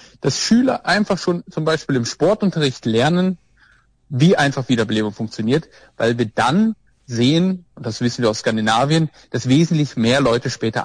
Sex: male